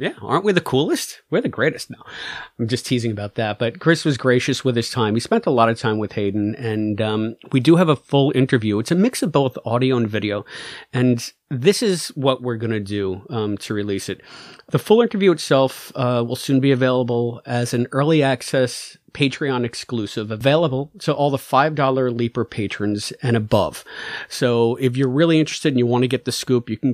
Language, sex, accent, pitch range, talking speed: English, male, American, 115-145 Hz, 210 wpm